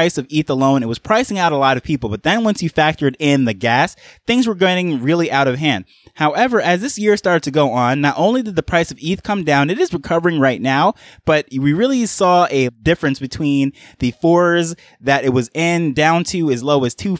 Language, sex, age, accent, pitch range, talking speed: English, male, 20-39, American, 135-175 Hz, 235 wpm